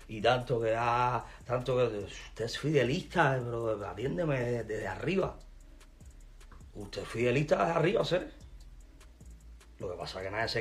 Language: Spanish